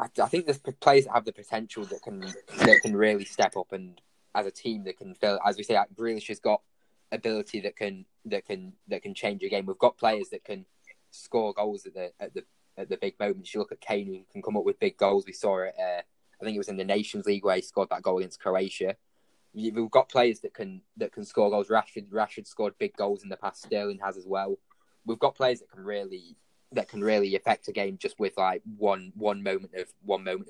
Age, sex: 10-29, male